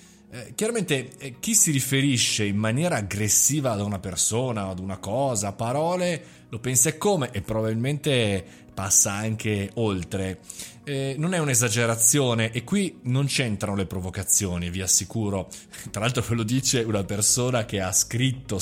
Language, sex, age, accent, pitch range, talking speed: Italian, male, 30-49, native, 100-140 Hz, 140 wpm